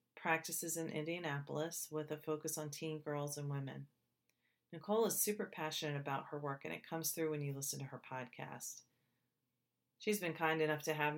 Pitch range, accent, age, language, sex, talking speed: 145-160 Hz, American, 40-59, English, female, 185 wpm